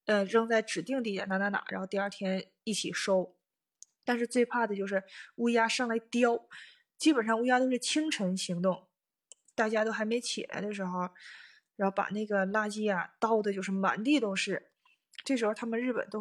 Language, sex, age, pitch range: Chinese, female, 20-39, 200-245 Hz